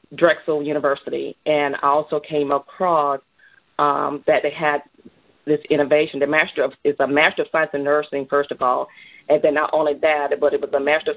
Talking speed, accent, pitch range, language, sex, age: 195 wpm, American, 145-160 Hz, English, female, 40-59